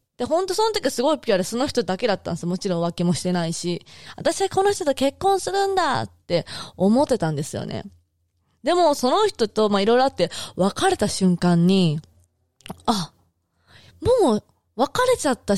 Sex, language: female, Japanese